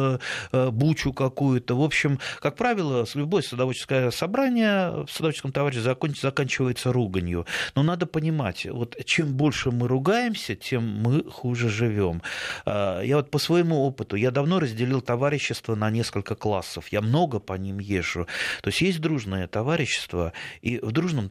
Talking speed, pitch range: 145 wpm, 105-140 Hz